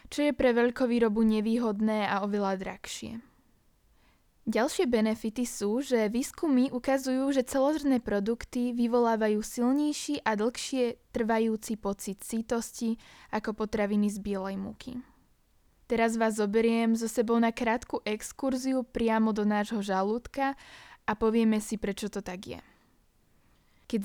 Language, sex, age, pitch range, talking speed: Slovak, female, 20-39, 210-250 Hz, 125 wpm